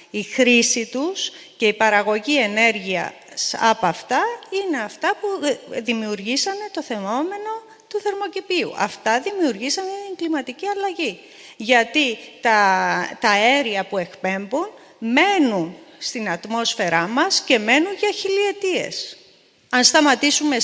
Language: Greek